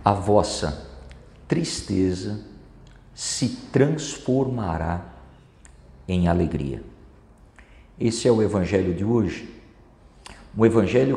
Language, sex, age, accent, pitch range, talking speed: Portuguese, male, 50-69, Brazilian, 95-135 Hz, 80 wpm